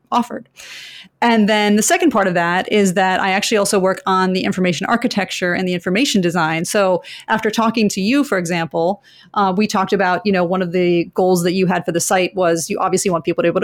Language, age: English, 30-49